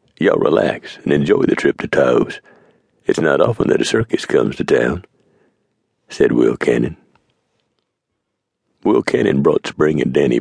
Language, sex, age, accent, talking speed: English, male, 60-79, American, 150 wpm